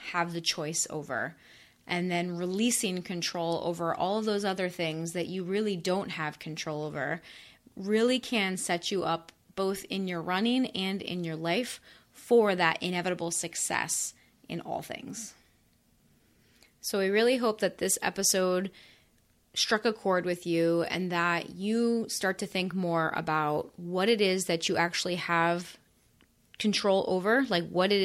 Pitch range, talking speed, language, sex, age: 175-205 Hz, 155 wpm, English, female, 20-39